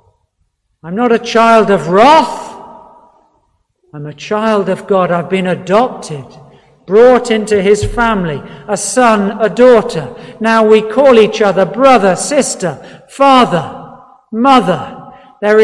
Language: English